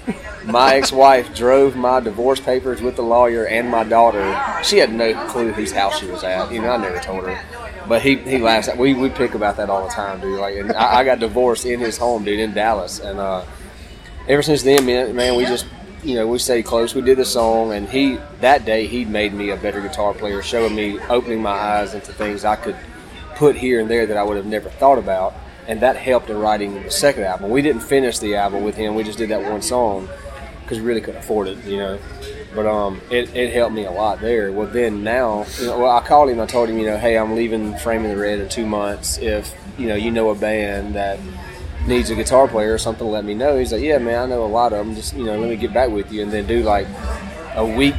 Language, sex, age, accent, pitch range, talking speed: English, male, 30-49, American, 105-120 Hz, 255 wpm